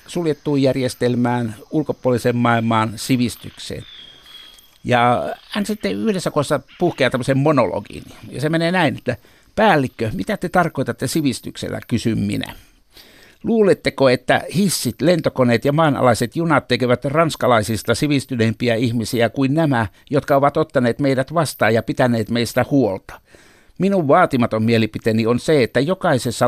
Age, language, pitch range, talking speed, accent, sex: 60-79, Finnish, 115-150 Hz, 120 wpm, native, male